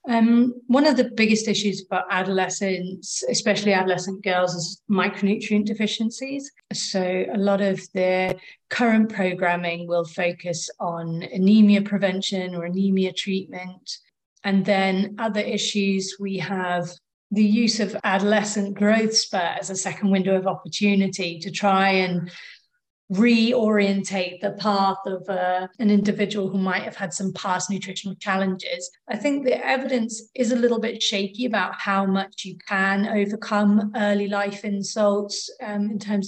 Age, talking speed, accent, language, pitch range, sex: 30-49, 140 wpm, British, English, 190-215 Hz, female